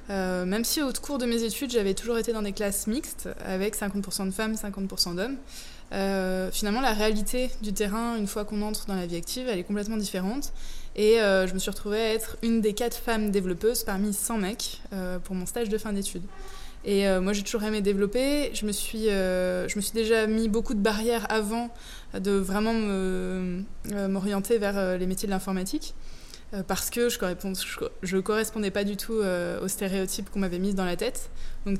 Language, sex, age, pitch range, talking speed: French, female, 20-39, 190-225 Hz, 210 wpm